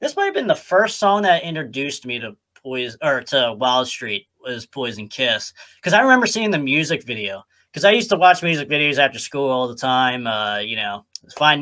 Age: 30-49